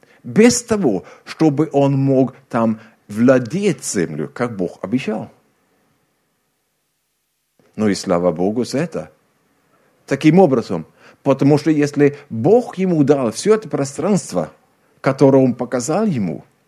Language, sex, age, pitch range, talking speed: Russian, male, 50-69, 120-170 Hz, 115 wpm